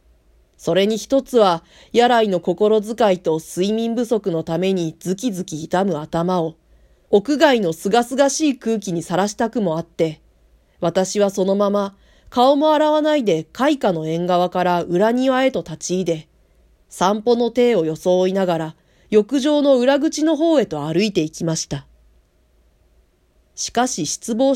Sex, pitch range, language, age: female, 165-235 Hz, Japanese, 40-59